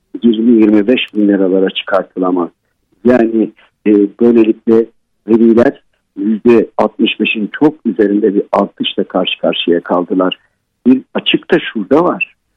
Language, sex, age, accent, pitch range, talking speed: Turkish, male, 50-69, native, 105-130 Hz, 100 wpm